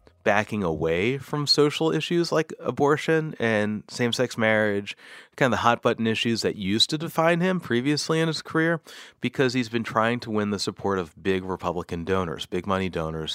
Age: 30-49